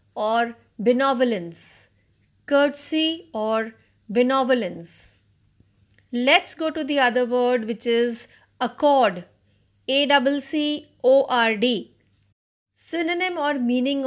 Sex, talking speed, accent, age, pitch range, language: female, 95 wpm, native, 50-69, 205-285 Hz, Marathi